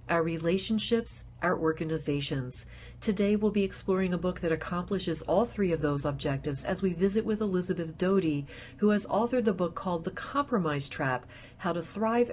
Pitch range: 150-200 Hz